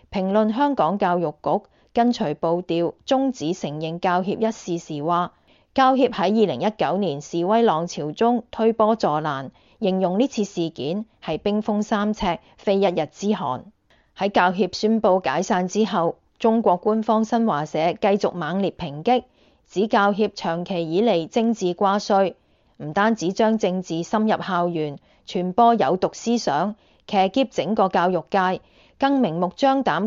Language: Chinese